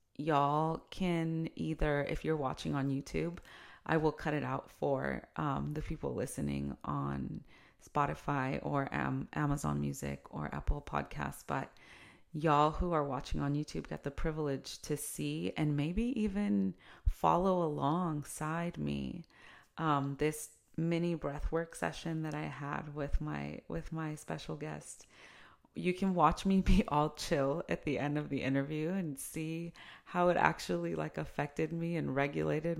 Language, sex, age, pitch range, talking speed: English, female, 30-49, 135-165 Hz, 150 wpm